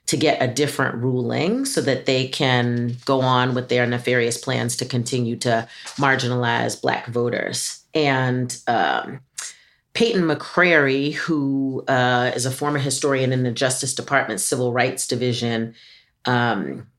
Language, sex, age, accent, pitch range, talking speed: English, female, 40-59, American, 125-150 Hz, 140 wpm